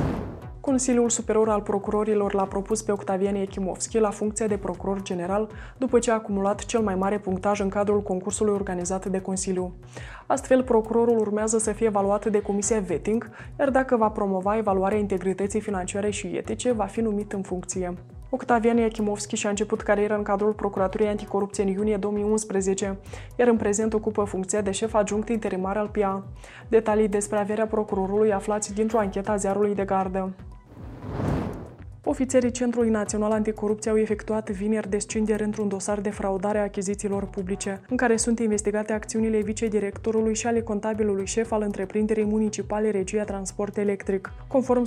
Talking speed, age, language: 155 wpm, 20-39, Romanian